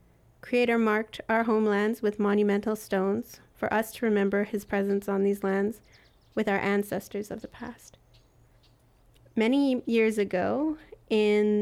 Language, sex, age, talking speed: English, female, 30-49, 135 wpm